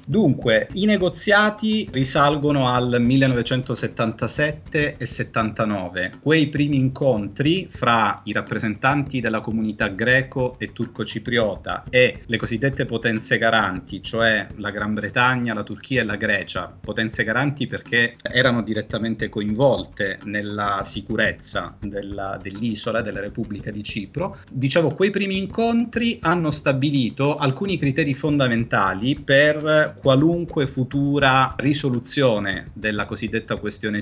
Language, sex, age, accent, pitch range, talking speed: Italian, male, 30-49, native, 110-140 Hz, 110 wpm